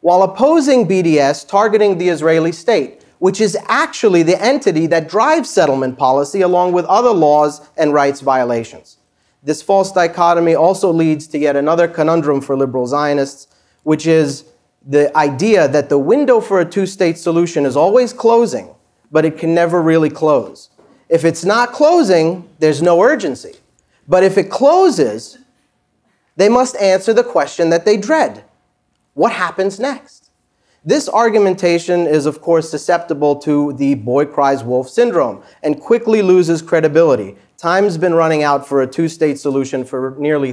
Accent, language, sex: American, English, male